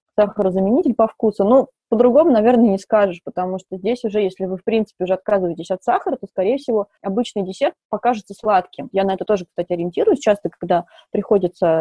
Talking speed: 185 wpm